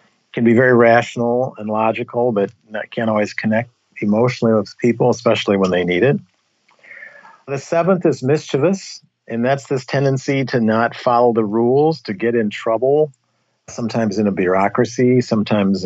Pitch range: 105-130 Hz